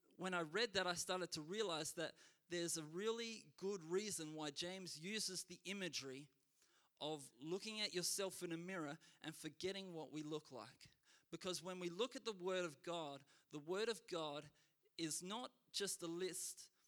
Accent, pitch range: Australian, 155-195 Hz